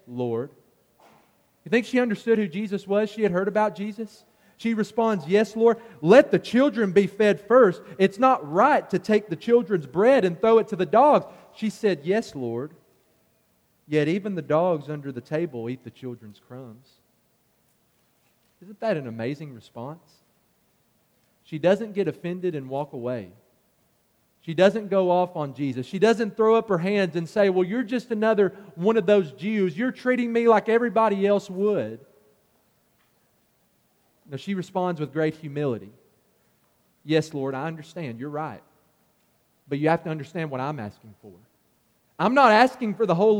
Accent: American